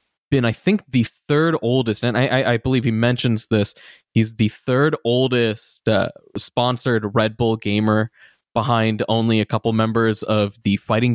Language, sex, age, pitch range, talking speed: English, male, 20-39, 110-130 Hz, 160 wpm